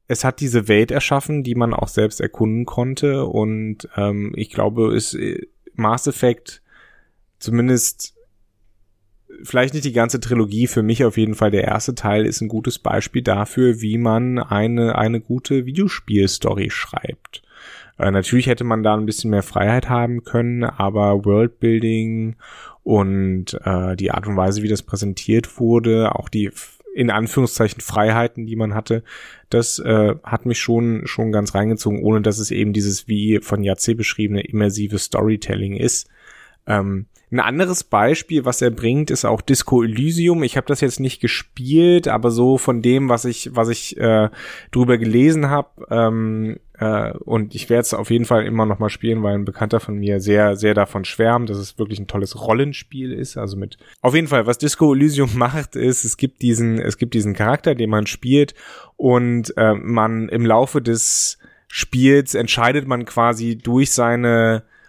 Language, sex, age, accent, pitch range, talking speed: German, male, 30-49, German, 105-125 Hz, 170 wpm